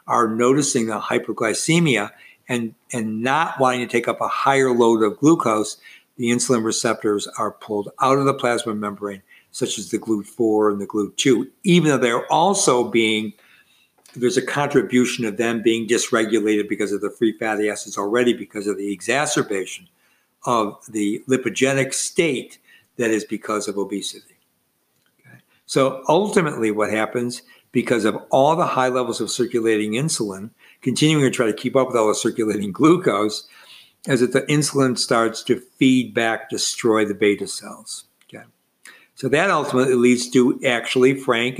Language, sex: English, male